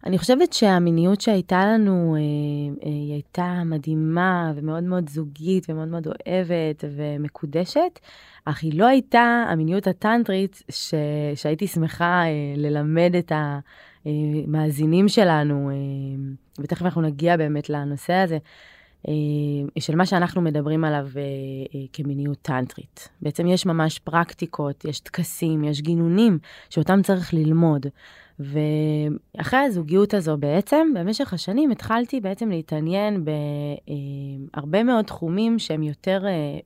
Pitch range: 150-180 Hz